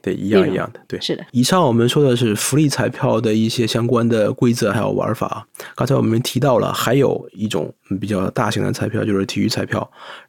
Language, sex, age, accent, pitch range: Chinese, male, 20-39, native, 100-125 Hz